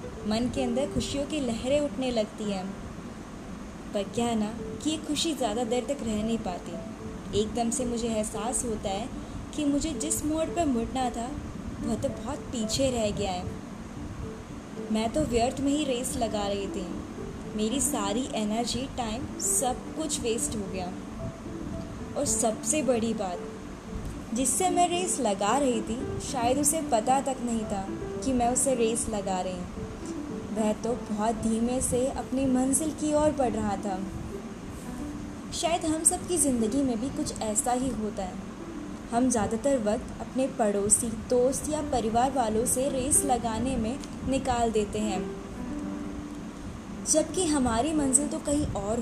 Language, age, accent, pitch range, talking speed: Hindi, 20-39, native, 220-275 Hz, 155 wpm